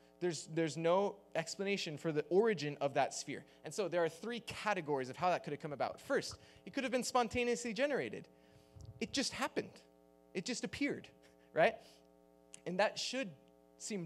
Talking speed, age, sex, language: 175 wpm, 20-39, male, English